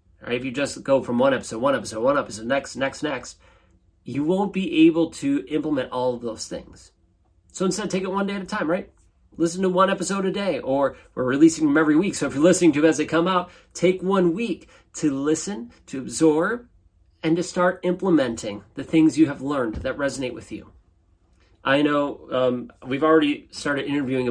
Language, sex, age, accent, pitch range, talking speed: English, male, 30-49, American, 115-160 Hz, 205 wpm